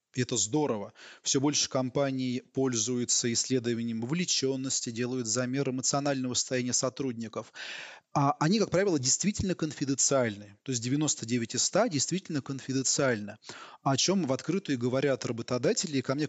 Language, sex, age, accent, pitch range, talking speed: Russian, male, 20-39, native, 125-150 Hz, 130 wpm